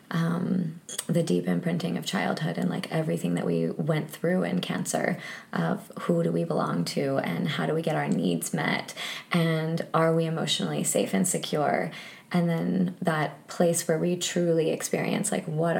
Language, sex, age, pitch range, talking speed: English, female, 20-39, 155-180 Hz, 175 wpm